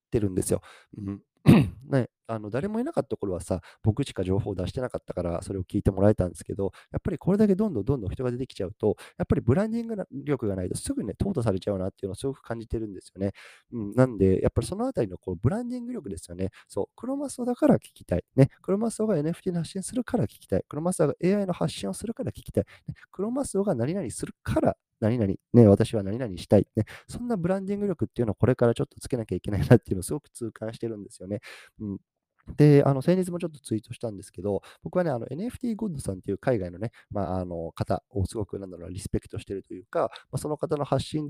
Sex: male